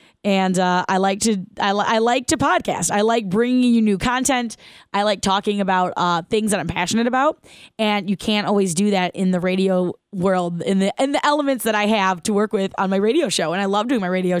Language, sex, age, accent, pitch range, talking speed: English, female, 20-39, American, 185-220 Hz, 240 wpm